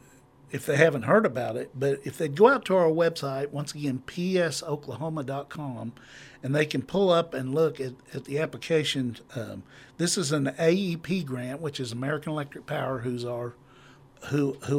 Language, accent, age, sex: English, American, 60-79, male